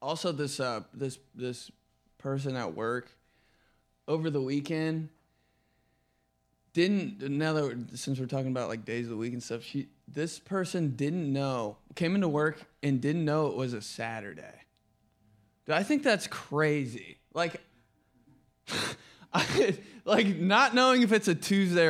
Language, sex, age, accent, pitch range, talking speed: English, male, 20-39, American, 115-165 Hz, 150 wpm